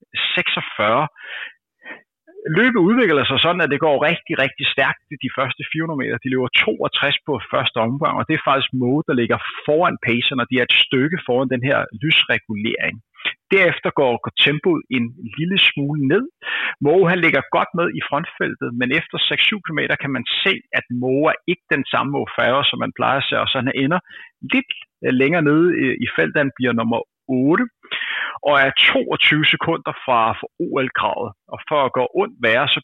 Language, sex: Danish, male